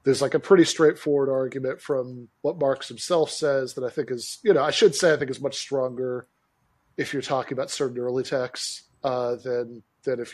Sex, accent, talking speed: male, American, 210 wpm